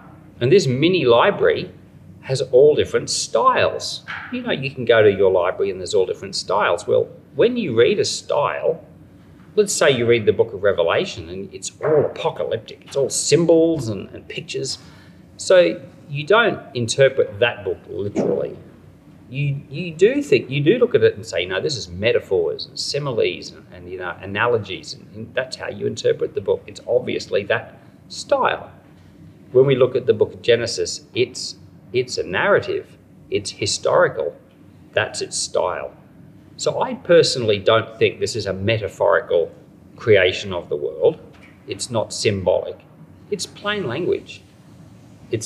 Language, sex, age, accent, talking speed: English, male, 40-59, Australian, 160 wpm